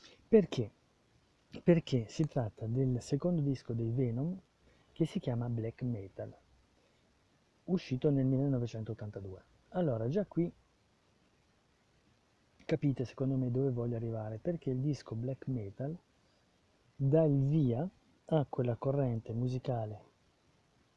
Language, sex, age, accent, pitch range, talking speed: Italian, male, 30-49, native, 110-135 Hz, 110 wpm